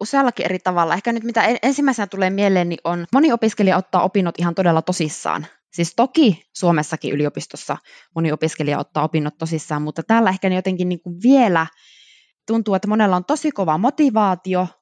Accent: native